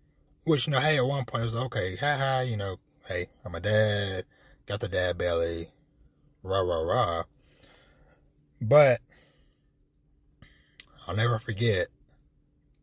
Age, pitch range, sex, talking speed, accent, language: 20-39, 85-120 Hz, male, 145 wpm, American, English